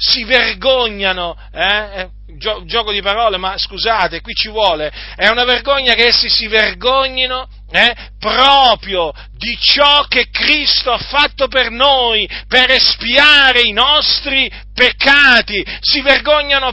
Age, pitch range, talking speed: 40-59, 235-285 Hz, 125 wpm